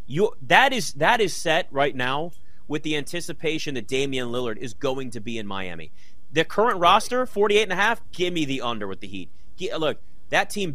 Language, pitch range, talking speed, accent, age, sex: English, 125-170 Hz, 210 wpm, American, 30-49, male